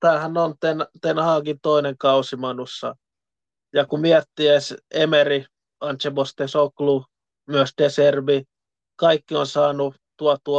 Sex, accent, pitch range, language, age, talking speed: male, native, 135-155 Hz, Finnish, 20-39, 110 wpm